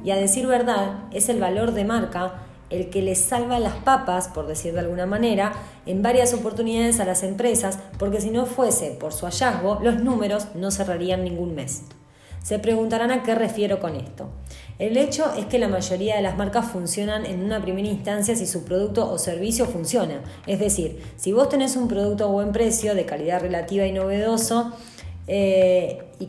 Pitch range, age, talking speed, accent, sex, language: 185-235 Hz, 20-39, 190 wpm, Argentinian, female, Spanish